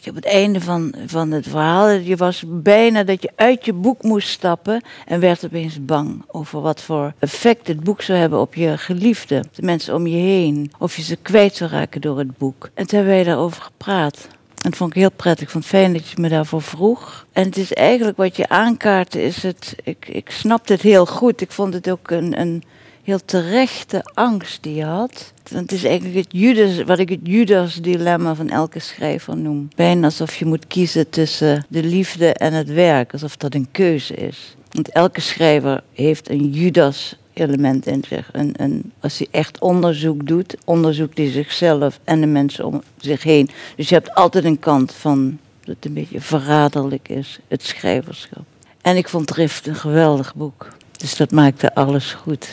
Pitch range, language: 150-185 Hz, Dutch